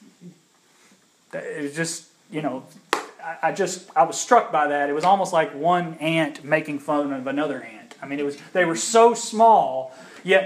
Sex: male